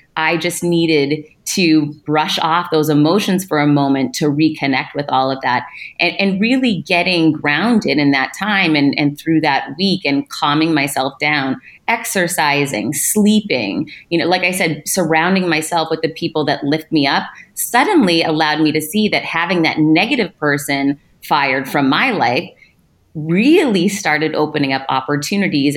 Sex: female